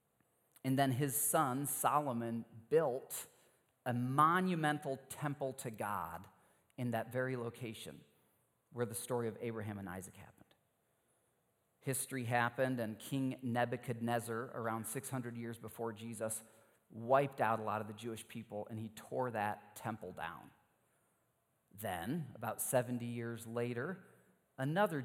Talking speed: 125 wpm